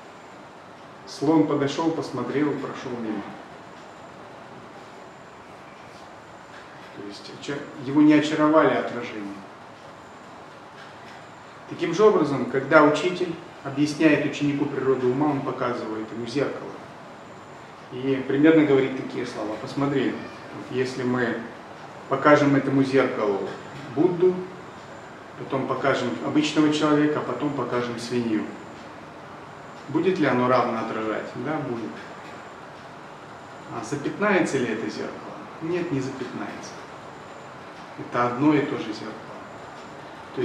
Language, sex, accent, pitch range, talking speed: Russian, male, native, 125-155 Hz, 100 wpm